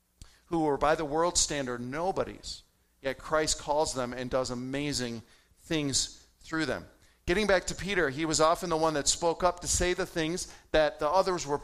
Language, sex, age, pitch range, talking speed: English, male, 40-59, 125-165 Hz, 190 wpm